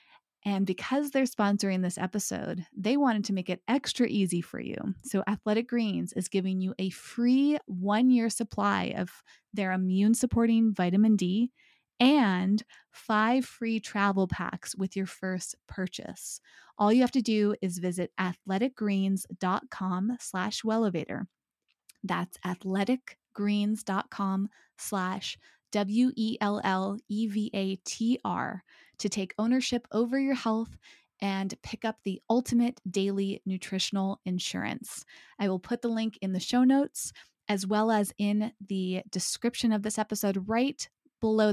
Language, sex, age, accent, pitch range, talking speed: English, female, 20-39, American, 190-225 Hz, 125 wpm